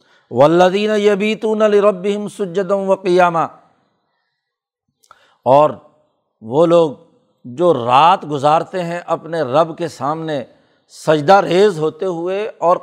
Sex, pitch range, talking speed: male, 150-185 Hz, 100 wpm